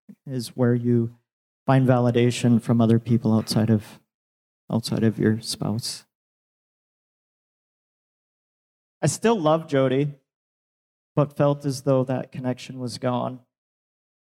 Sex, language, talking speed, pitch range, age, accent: male, English, 110 wpm, 125-145 Hz, 40-59, American